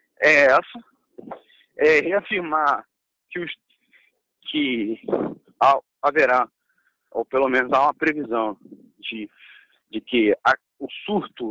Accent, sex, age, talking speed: Brazilian, male, 40-59, 100 wpm